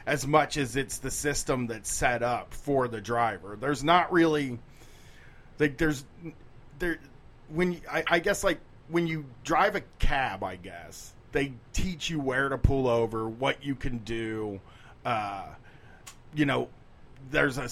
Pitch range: 120-155 Hz